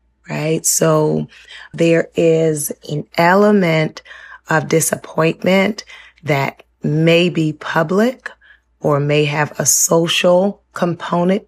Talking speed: 95 wpm